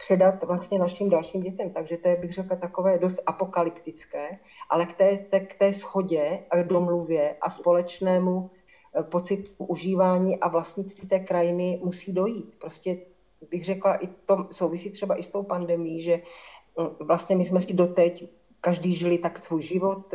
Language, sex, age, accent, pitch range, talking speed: Czech, female, 50-69, native, 170-190 Hz, 165 wpm